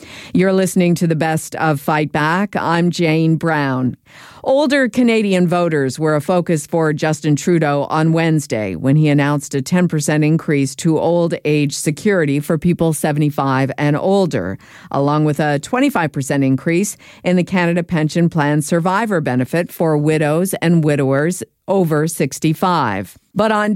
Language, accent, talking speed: English, American, 145 wpm